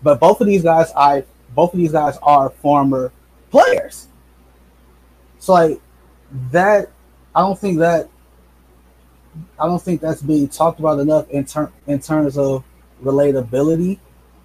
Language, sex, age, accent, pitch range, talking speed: English, male, 20-39, American, 135-170 Hz, 140 wpm